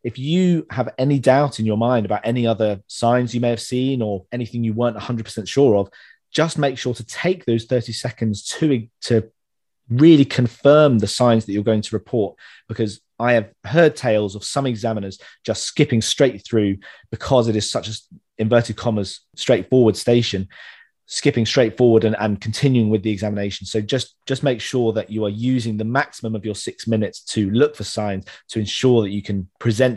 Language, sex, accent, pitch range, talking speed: English, male, British, 105-125 Hz, 195 wpm